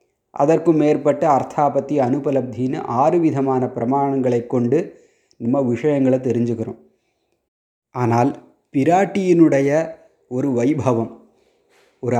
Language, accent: Tamil, native